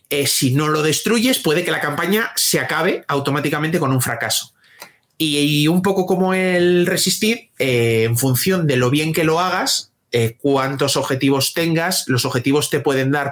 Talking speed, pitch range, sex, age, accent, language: 180 wpm, 125-170 Hz, male, 30-49, Spanish, Spanish